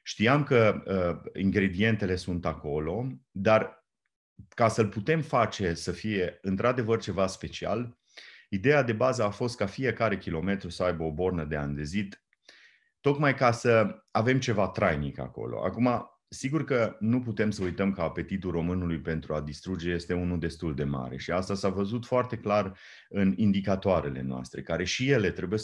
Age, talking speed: 30-49, 160 wpm